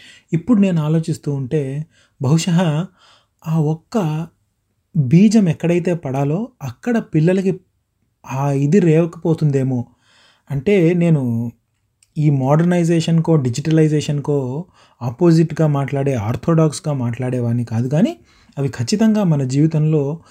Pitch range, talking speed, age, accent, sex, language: 135-170 Hz, 90 wpm, 30-49, native, male, Telugu